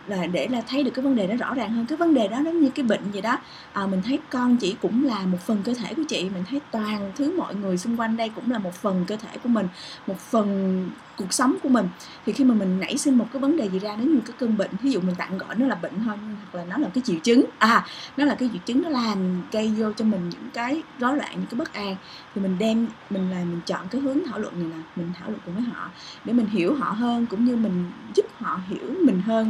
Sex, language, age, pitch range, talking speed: female, Vietnamese, 20-39, 195-250 Hz, 290 wpm